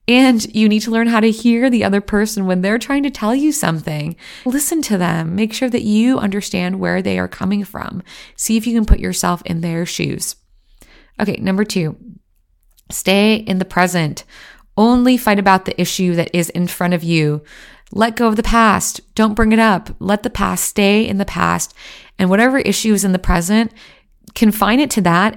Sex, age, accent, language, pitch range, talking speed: female, 20-39, American, English, 180-220 Hz, 200 wpm